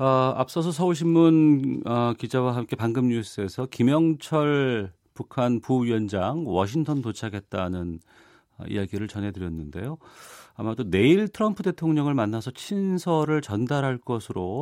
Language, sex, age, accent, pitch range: Korean, male, 40-59, native, 100-145 Hz